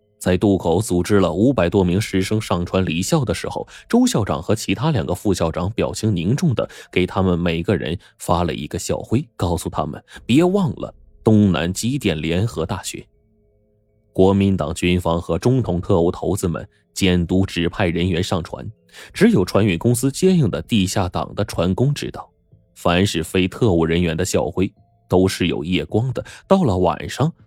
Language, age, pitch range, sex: Chinese, 20-39, 90-110 Hz, male